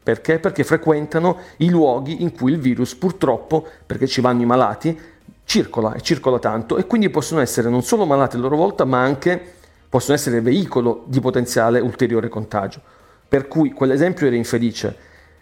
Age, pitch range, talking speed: 40-59, 115-140 Hz, 165 wpm